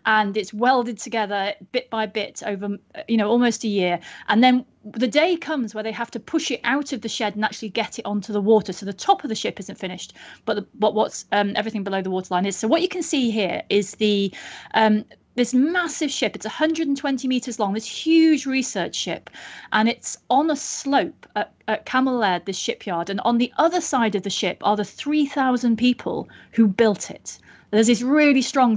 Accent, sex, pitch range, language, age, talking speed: British, female, 205-265 Hz, English, 30-49, 215 wpm